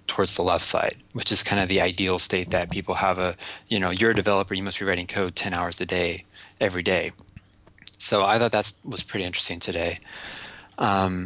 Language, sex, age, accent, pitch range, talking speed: English, male, 20-39, American, 90-105 Hz, 215 wpm